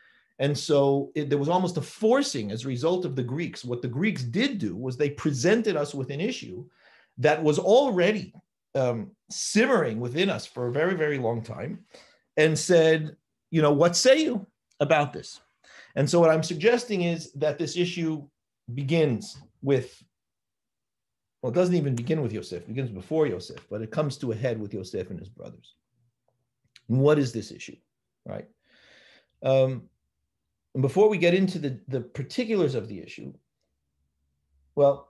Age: 50-69